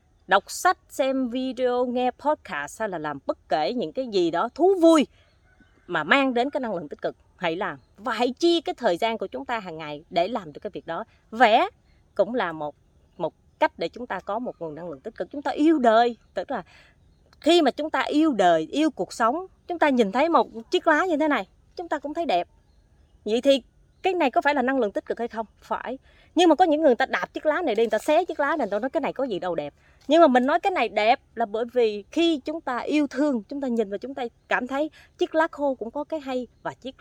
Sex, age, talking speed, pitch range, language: female, 20-39, 265 wpm, 210-305 Hz, Vietnamese